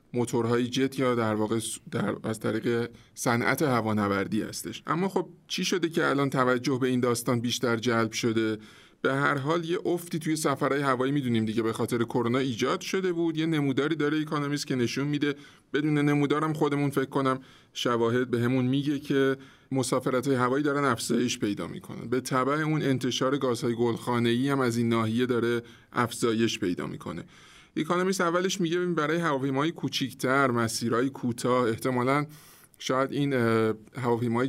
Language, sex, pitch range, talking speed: Persian, male, 115-145 Hz, 160 wpm